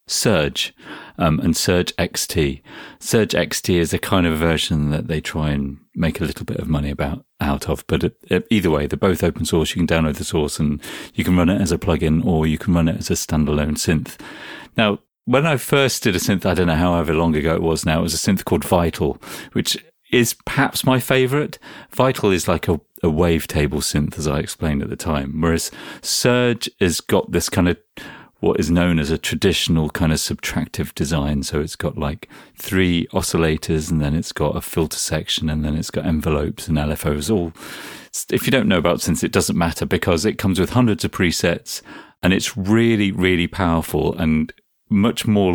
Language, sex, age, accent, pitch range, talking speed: English, male, 40-59, British, 75-95 Hz, 205 wpm